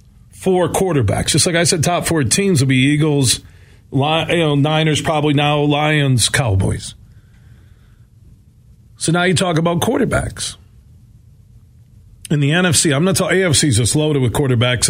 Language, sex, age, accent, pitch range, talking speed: English, male, 40-59, American, 115-165 Hz, 150 wpm